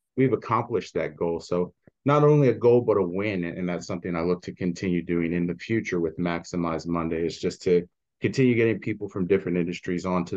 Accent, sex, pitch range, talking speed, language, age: American, male, 85-105 Hz, 210 wpm, English, 30-49